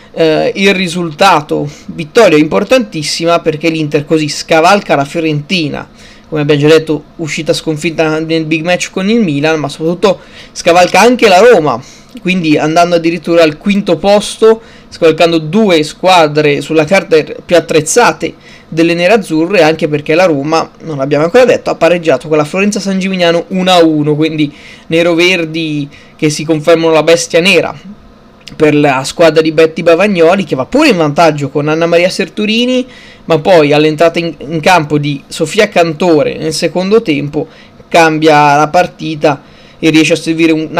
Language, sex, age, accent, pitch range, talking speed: Italian, male, 20-39, native, 155-185 Hz, 155 wpm